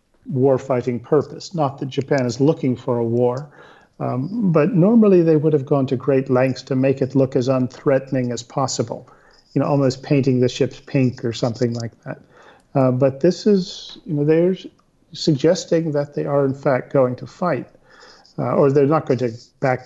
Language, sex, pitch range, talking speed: English, male, 130-150 Hz, 190 wpm